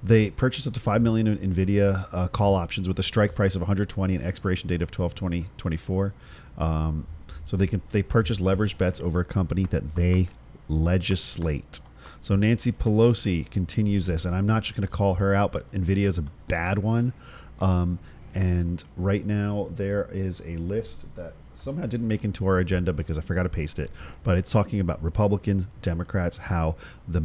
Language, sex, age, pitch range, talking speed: English, male, 40-59, 85-105 Hz, 190 wpm